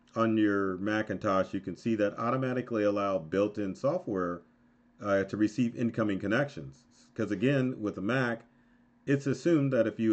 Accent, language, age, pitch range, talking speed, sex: American, English, 40-59, 95-125 Hz, 155 wpm, male